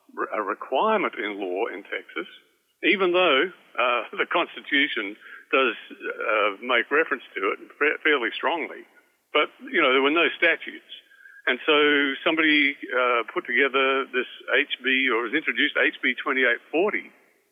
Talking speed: 135 wpm